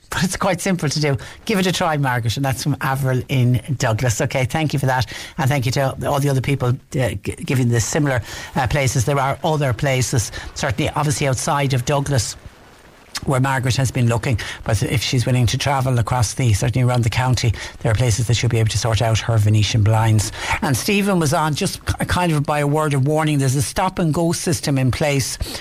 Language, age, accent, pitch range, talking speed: English, 60-79, Irish, 120-145 Hz, 225 wpm